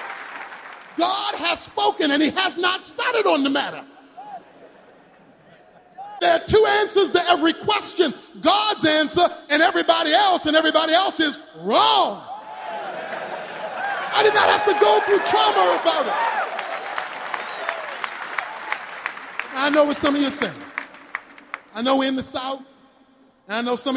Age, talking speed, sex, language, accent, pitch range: 40-59, 140 wpm, male, English, American, 280-390 Hz